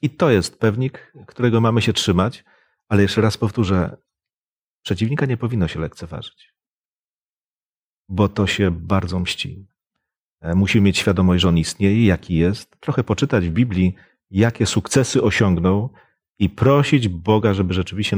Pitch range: 95-120 Hz